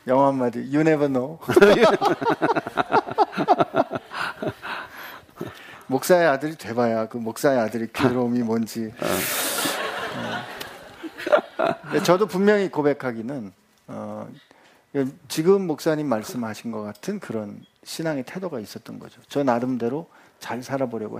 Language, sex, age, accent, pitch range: Korean, male, 40-59, native, 120-160 Hz